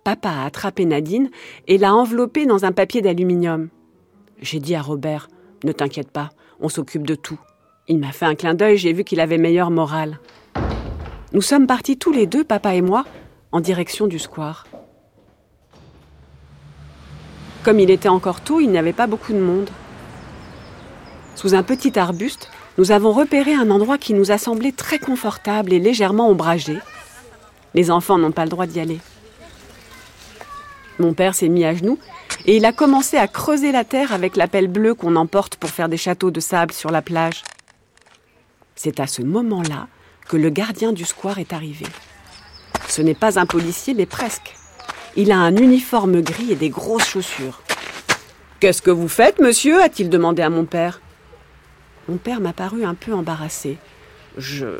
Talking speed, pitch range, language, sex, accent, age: 175 wpm, 160-210 Hz, French, female, French, 40-59